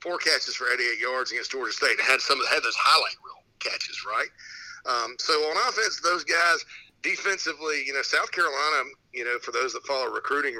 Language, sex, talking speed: English, male, 210 wpm